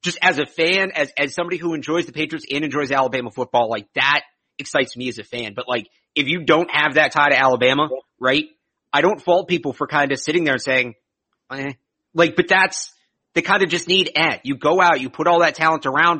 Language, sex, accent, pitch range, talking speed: English, male, American, 130-165 Hz, 230 wpm